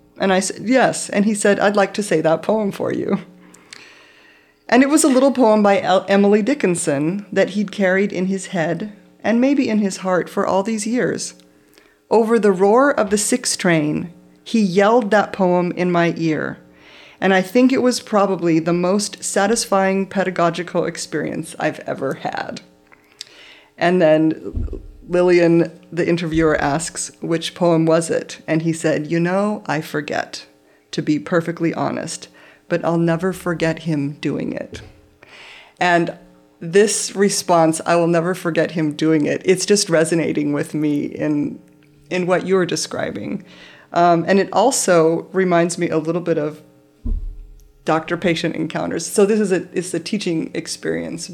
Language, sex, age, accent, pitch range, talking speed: English, female, 40-59, American, 160-200 Hz, 160 wpm